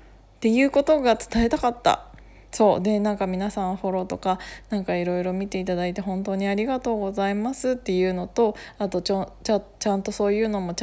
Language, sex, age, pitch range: Japanese, female, 20-39, 180-235 Hz